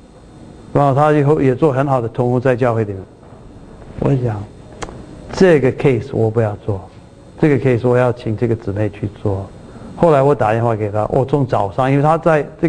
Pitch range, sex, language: 115-150 Hz, male, Chinese